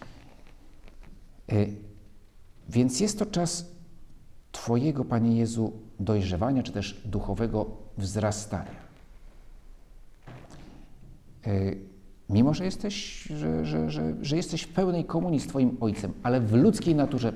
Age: 50-69